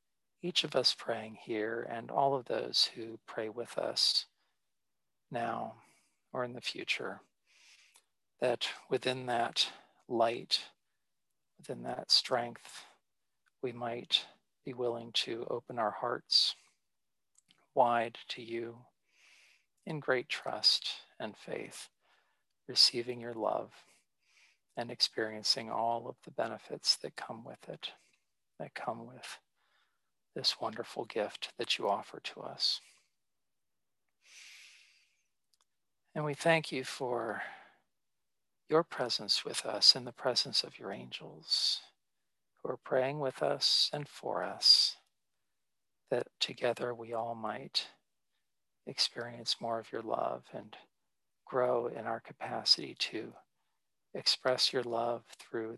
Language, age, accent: English, 50-69, American